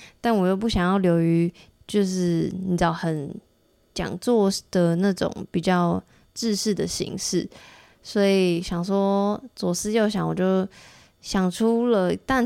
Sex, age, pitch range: female, 20-39, 170-200 Hz